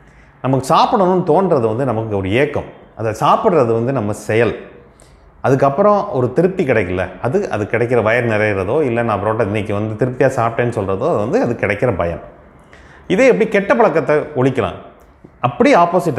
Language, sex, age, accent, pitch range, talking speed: Tamil, male, 30-49, native, 100-155 Hz, 150 wpm